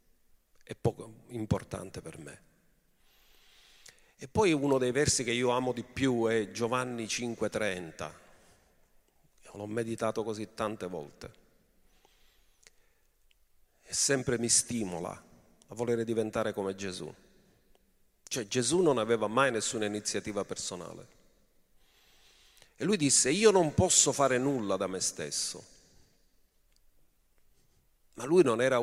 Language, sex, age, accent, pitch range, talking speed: Italian, male, 40-59, native, 105-140 Hz, 115 wpm